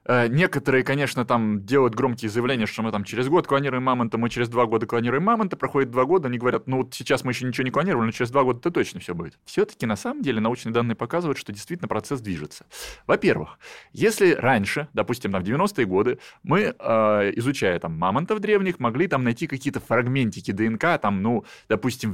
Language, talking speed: Russian, 190 wpm